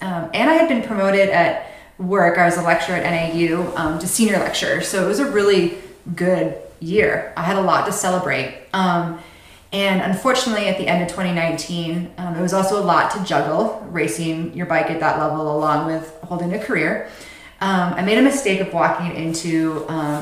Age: 20-39